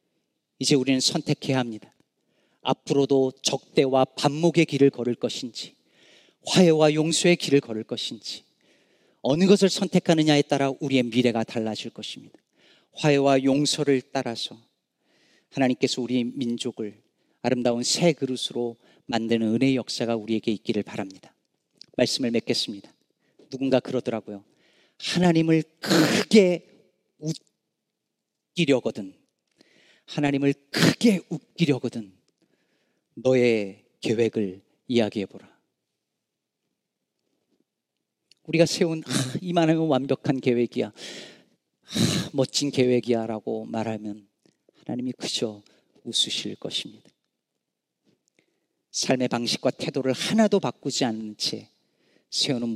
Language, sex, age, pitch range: Korean, male, 40-59, 115-150 Hz